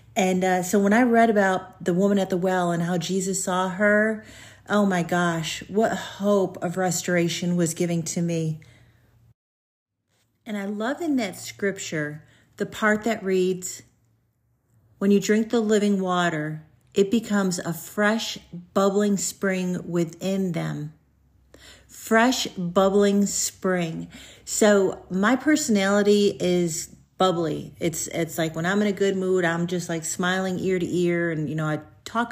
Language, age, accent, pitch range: English, 40-59, American, 175-210 Hz